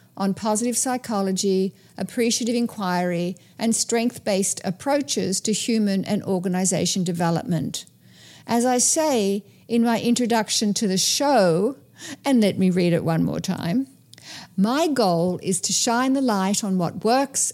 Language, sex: English, female